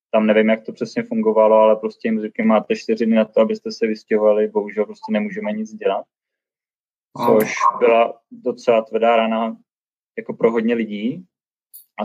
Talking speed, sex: 160 wpm, male